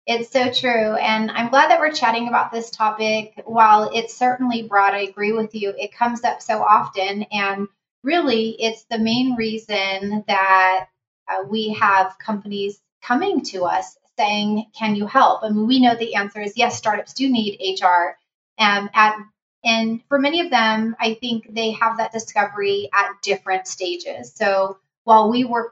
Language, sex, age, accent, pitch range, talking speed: English, female, 30-49, American, 195-230 Hz, 175 wpm